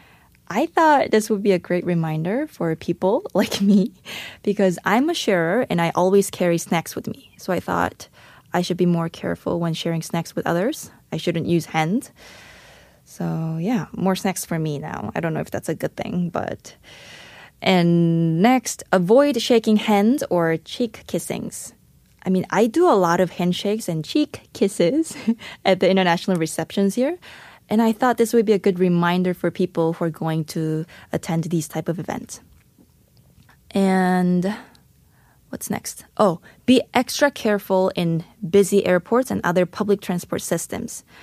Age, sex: 20-39, female